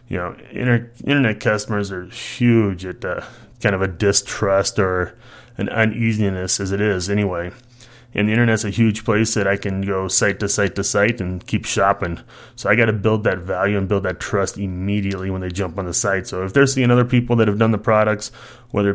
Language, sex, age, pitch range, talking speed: English, male, 20-39, 100-120 Hz, 210 wpm